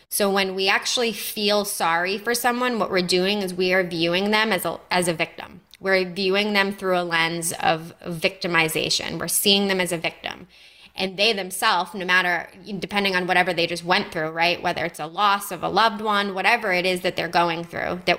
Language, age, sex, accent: English, 20-39, female, American